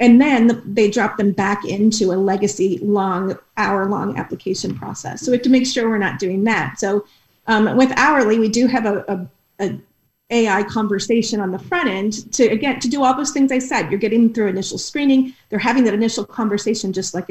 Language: English